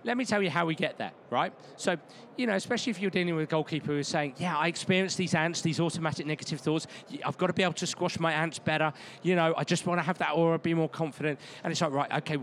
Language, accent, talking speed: English, British, 280 wpm